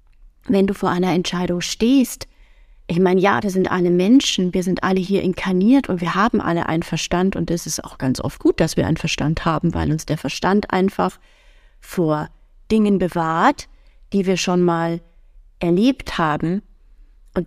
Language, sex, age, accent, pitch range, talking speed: German, female, 30-49, German, 165-195 Hz, 175 wpm